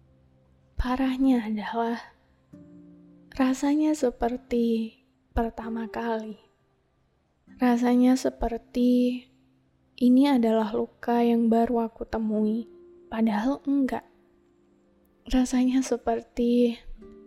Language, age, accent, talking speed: Indonesian, 20-39, native, 65 wpm